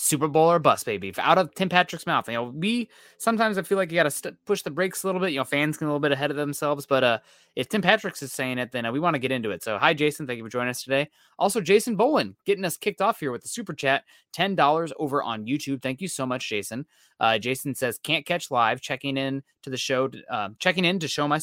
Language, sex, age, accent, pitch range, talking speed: English, male, 20-39, American, 130-180 Hz, 285 wpm